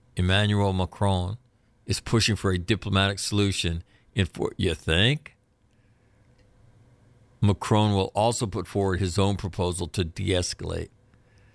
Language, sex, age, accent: English, male, 50-69, American